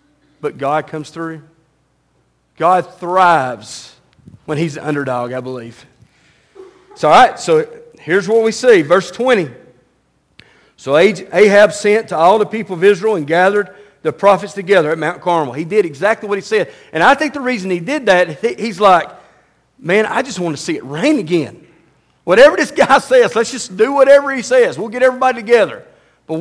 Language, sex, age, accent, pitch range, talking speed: English, male, 40-59, American, 160-220 Hz, 180 wpm